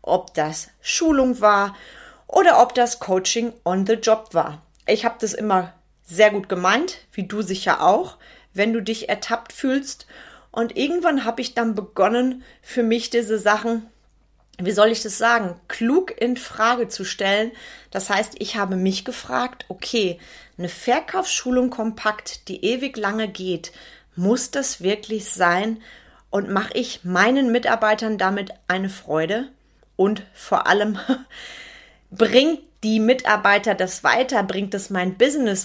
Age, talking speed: 30-49, 145 wpm